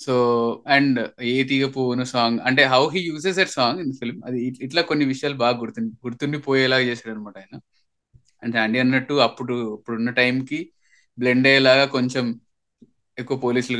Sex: male